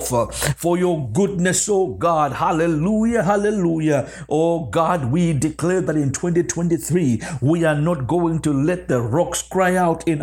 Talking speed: 145 wpm